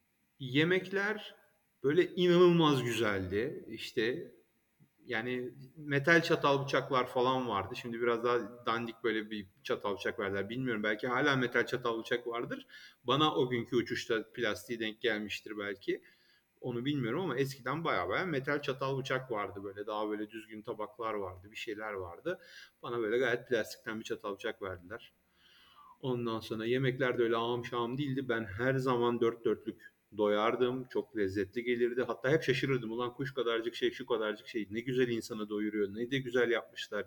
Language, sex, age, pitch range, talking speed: Turkish, male, 30-49, 105-135 Hz, 160 wpm